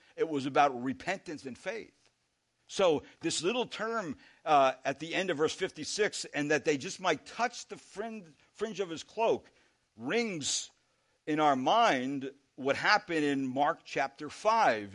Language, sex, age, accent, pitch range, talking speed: English, male, 60-79, American, 130-180 Hz, 155 wpm